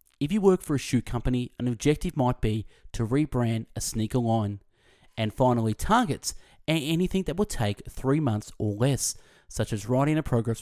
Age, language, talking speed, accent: 30-49, English, 185 wpm, Australian